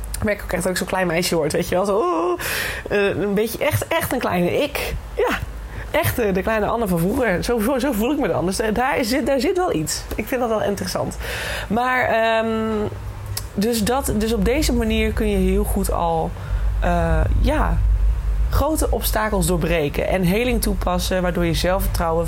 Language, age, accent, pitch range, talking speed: Dutch, 20-39, Dutch, 170-220 Hz, 175 wpm